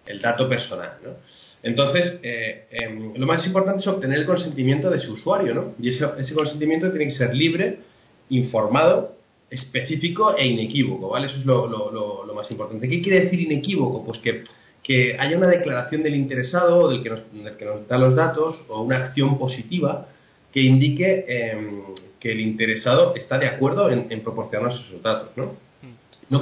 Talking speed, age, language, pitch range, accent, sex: 180 wpm, 30-49, Spanish, 115-150 Hz, Spanish, male